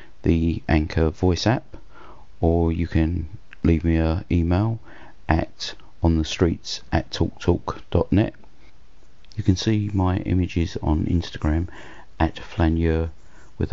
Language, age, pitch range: English, 50-69, 85-100 Hz